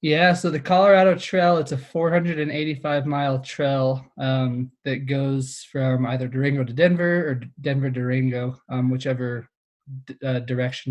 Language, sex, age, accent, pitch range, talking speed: English, male, 20-39, American, 125-145 Hz, 140 wpm